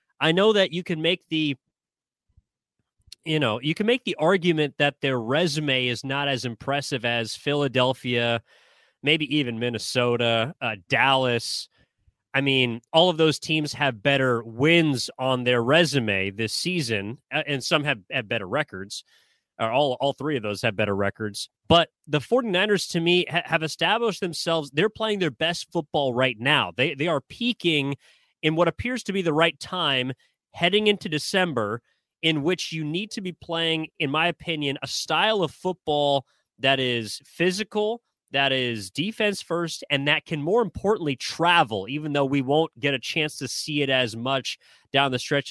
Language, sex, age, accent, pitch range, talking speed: English, male, 30-49, American, 130-170 Hz, 170 wpm